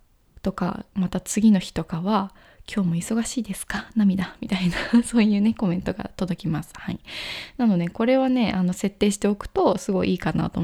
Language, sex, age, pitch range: Japanese, female, 20-39, 190-245 Hz